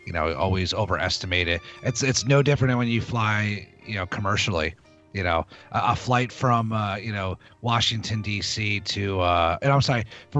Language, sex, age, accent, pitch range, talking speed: English, male, 30-49, American, 90-125 Hz, 190 wpm